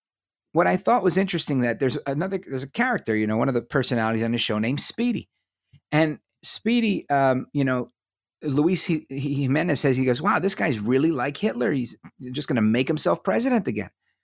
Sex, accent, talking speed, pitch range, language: male, American, 195 wpm, 120-195 Hz, English